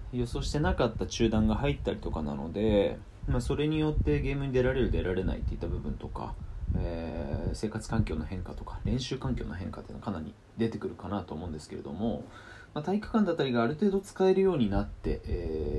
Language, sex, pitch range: Japanese, male, 95-140 Hz